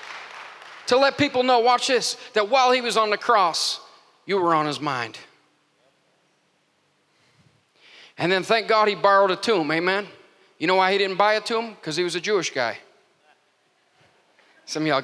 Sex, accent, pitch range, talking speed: male, American, 155-195 Hz, 175 wpm